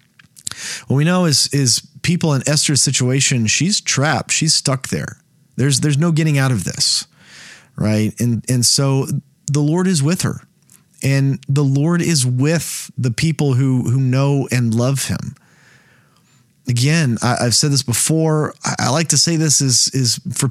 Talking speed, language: 170 wpm, English